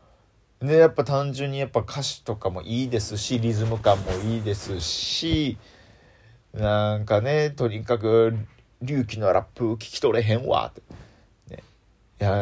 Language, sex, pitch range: Japanese, male, 100-135 Hz